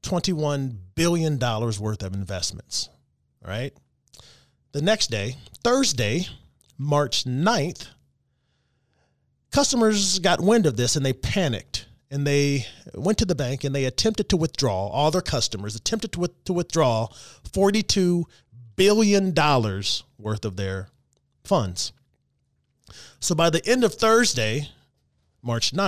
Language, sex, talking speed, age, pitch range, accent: English, male, 125 wpm, 30-49, 110-165 Hz, American